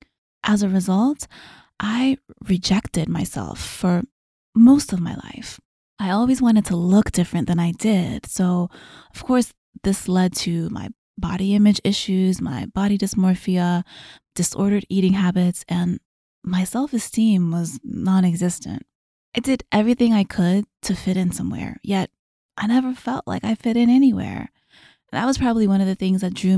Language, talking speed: English, 155 wpm